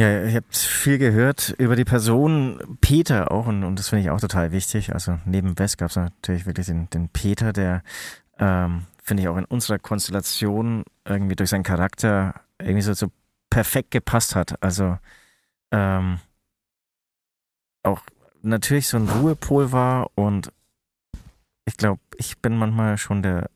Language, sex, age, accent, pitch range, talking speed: German, male, 30-49, German, 95-115 Hz, 160 wpm